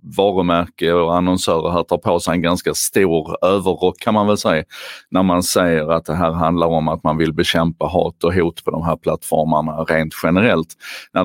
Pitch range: 85-95 Hz